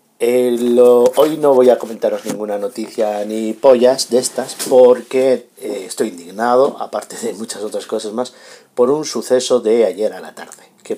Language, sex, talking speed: Spanish, male, 175 wpm